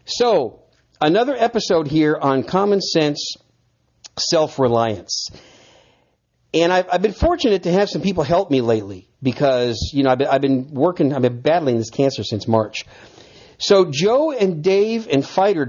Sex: male